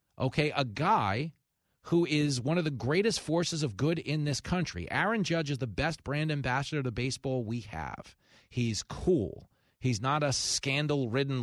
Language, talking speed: English, 170 wpm